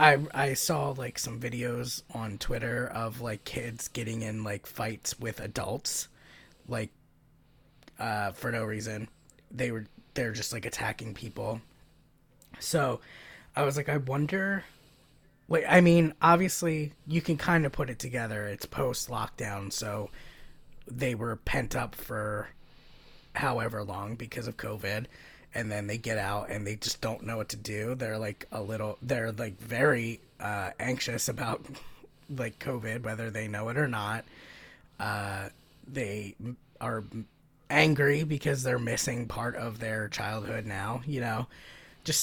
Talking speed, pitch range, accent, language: 150 wpm, 110-135 Hz, American, English